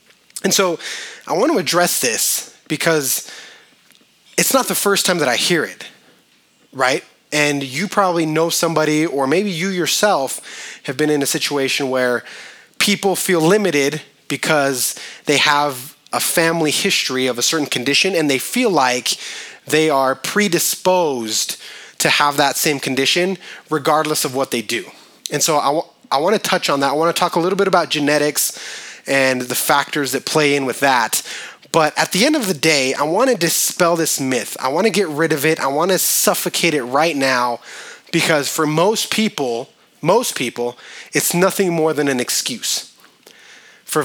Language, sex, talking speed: English, male, 170 wpm